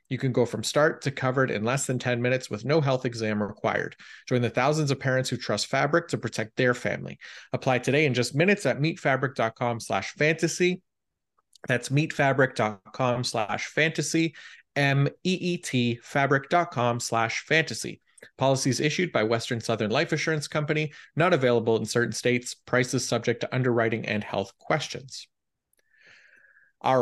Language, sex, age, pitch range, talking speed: English, male, 30-49, 120-145 Hz, 140 wpm